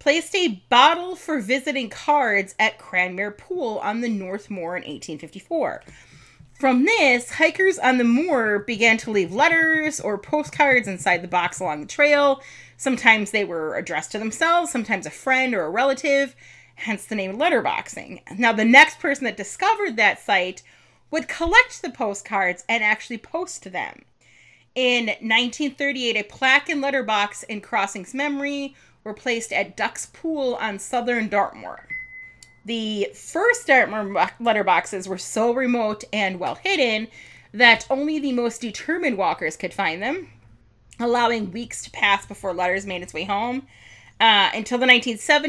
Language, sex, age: English, female, 30-49